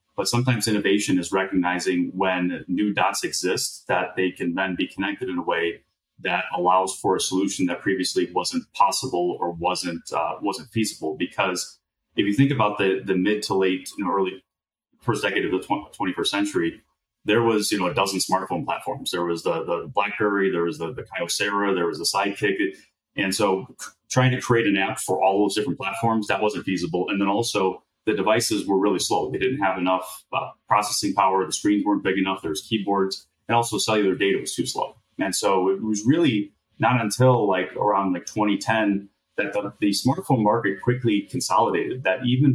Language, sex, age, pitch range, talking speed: English, male, 30-49, 95-115 Hz, 195 wpm